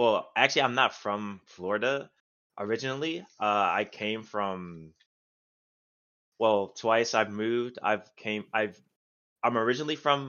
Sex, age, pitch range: male, 20-39, 85-105 Hz